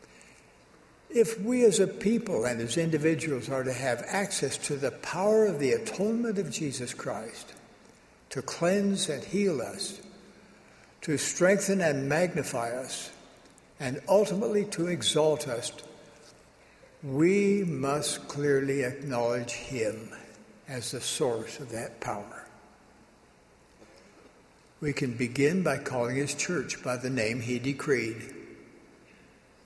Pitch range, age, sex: 130-185 Hz, 60-79, male